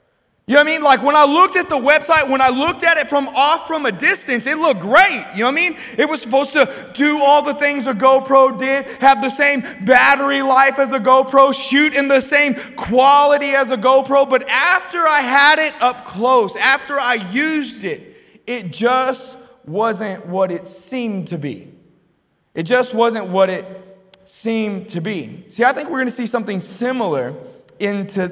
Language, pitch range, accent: English, 180-270 Hz, American